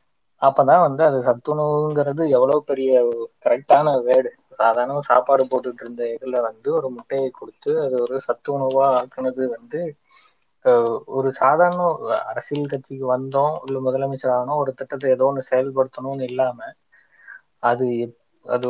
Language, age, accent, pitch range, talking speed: Tamil, 20-39, native, 125-145 Hz, 125 wpm